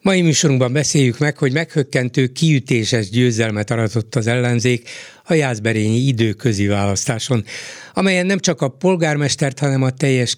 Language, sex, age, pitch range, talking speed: Hungarian, male, 60-79, 120-150 Hz, 135 wpm